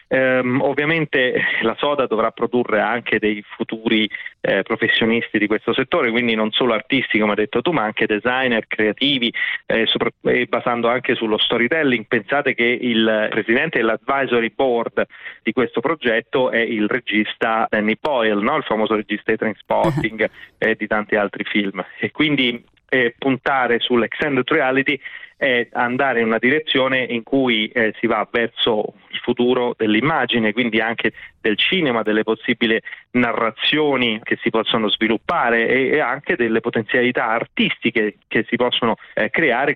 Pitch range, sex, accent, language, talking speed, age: 110-130 Hz, male, native, Italian, 150 wpm, 30-49